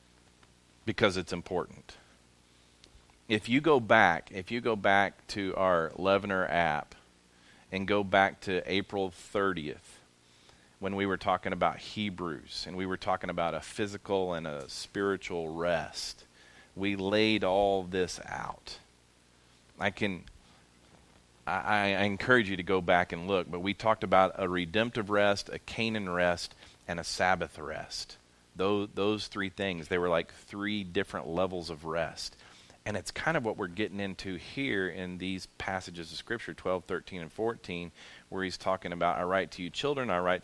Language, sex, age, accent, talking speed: English, male, 40-59, American, 160 wpm